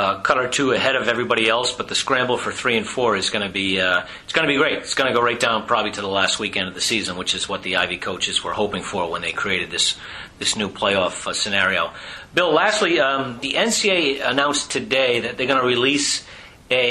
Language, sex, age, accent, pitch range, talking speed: English, male, 40-59, American, 105-135 Hz, 250 wpm